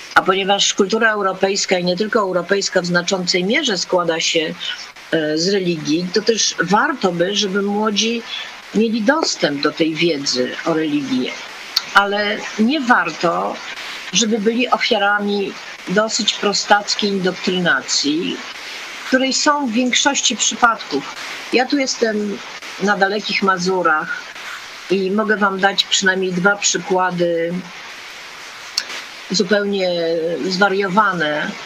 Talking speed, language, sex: 110 wpm, Polish, female